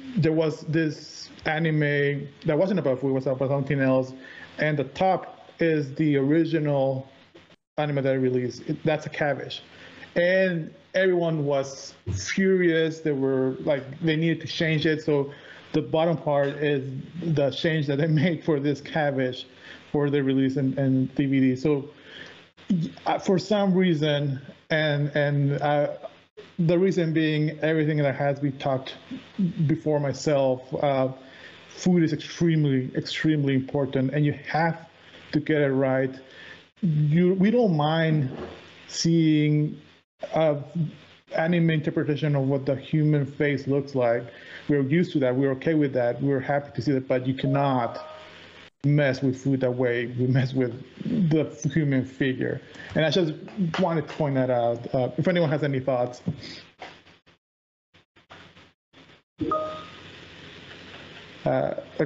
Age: 30-49